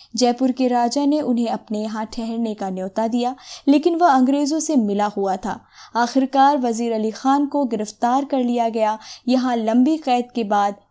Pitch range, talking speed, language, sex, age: 225-295 Hz, 175 wpm, Hindi, female, 20-39